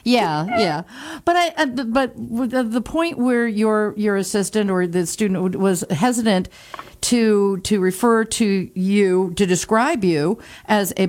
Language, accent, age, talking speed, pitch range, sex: English, American, 50-69, 140 wpm, 170-215 Hz, female